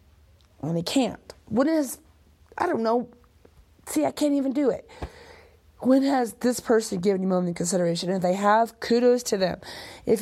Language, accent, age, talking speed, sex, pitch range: English, American, 30-49, 180 wpm, female, 190-260 Hz